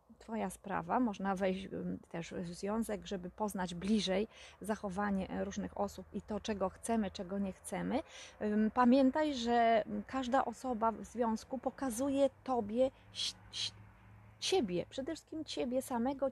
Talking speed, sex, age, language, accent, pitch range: 120 wpm, female, 20-39, Polish, native, 195-260 Hz